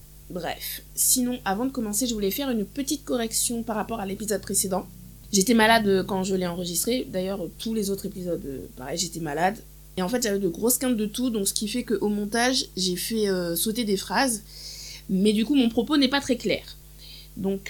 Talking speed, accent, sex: 205 wpm, French, female